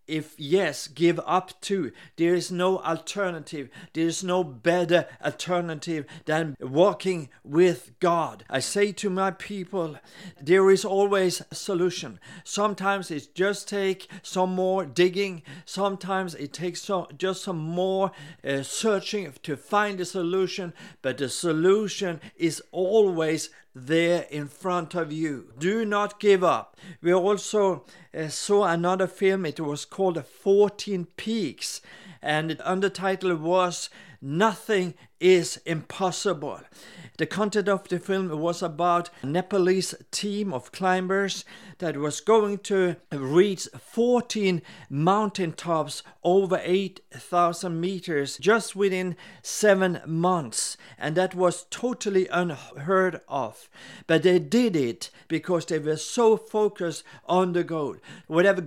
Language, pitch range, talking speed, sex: English, 160-195 Hz, 130 wpm, male